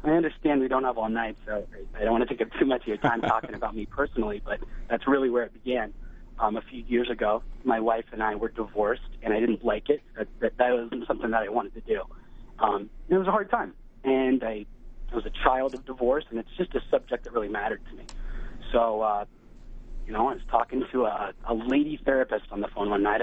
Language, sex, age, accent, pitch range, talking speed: English, male, 30-49, American, 110-130 Hz, 245 wpm